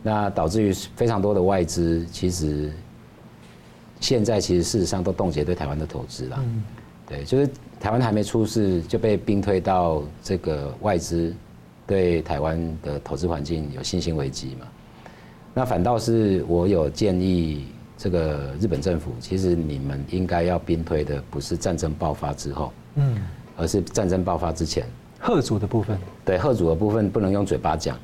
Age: 50-69